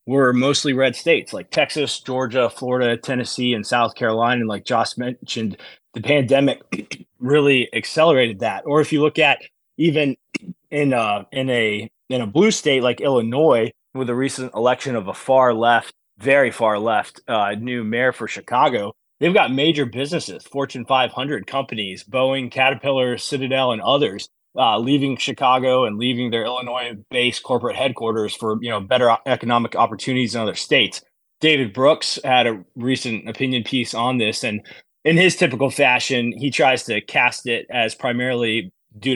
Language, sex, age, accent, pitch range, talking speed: English, male, 20-39, American, 115-135 Hz, 160 wpm